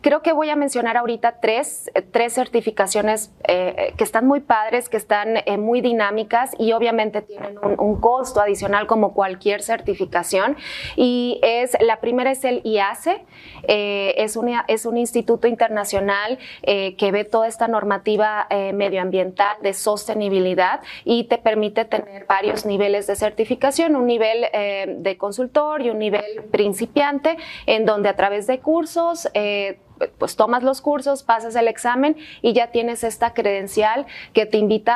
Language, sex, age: Spanish, female, 30-49